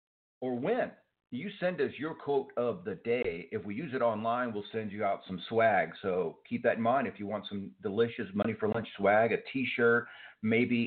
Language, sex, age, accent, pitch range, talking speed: English, male, 50-69, American, 100-145 Hz, 210 wpm